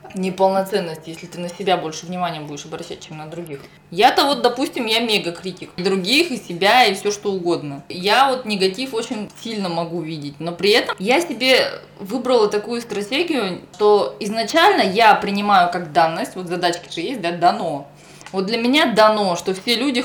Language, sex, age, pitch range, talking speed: Russian, female, 20-39, 170-225 Hz, 175 wpm